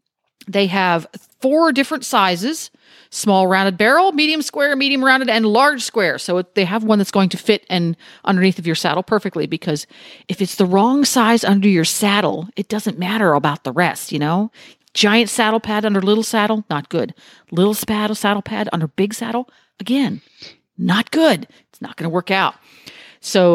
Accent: American